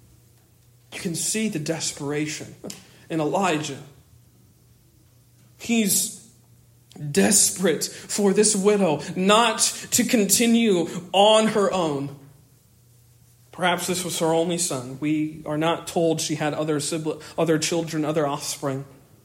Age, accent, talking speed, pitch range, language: 40-59, American, 110 wpm, 125-190 Hz, English